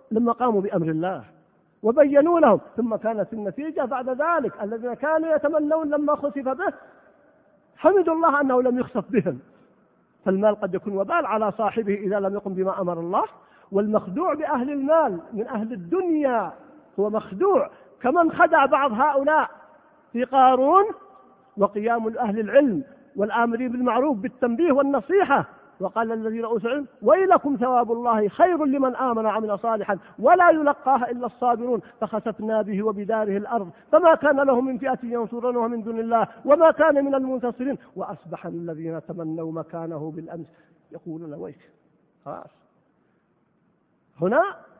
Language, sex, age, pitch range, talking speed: Arabic, male, 50-69, 210-295 Hz, 130 wpm